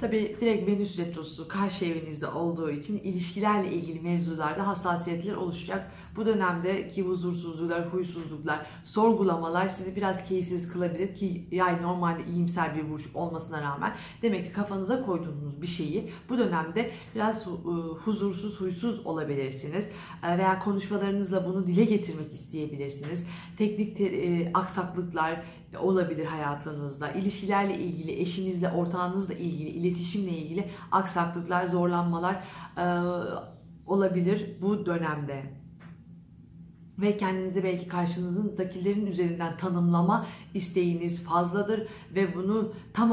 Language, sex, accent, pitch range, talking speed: Turkish, female, native, 170-195 Hz, 105 wpm